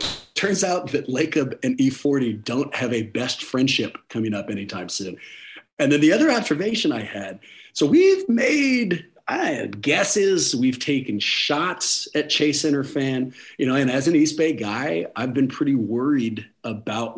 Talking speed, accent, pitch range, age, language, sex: 165 wpm, American, 125-195 Hz, 40-59, English, male